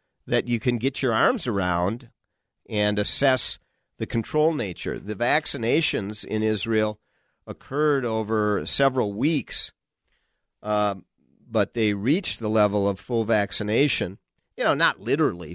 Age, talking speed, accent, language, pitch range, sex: 50-69, 125 wpm, American, English, 105-130 Hz, male